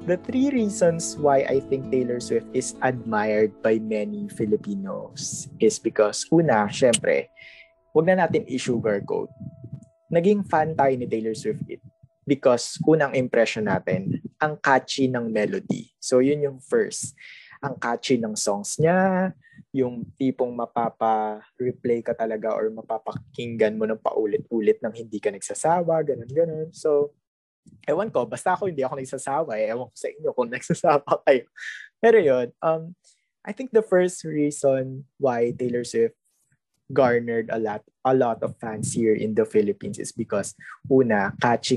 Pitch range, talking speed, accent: 120-170 Hz, 150 wpm, native